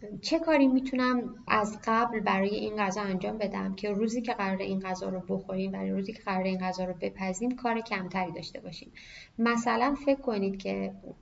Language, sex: Persian, female